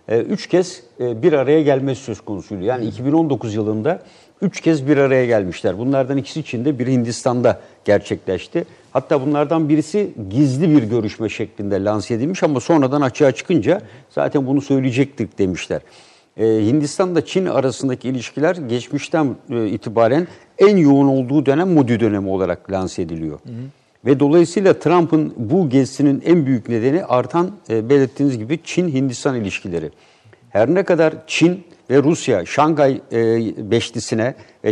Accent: native